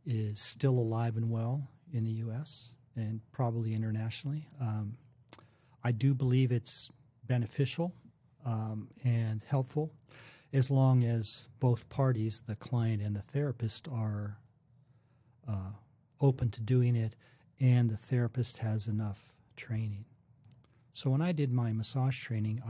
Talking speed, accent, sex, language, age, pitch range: 130 wpm, American, male, English, 40-59, 110-130 Hz